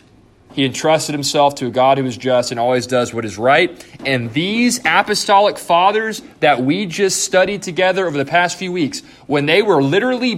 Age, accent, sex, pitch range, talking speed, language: 30-49, American, male, 125-160 Hz, 190 wpm, English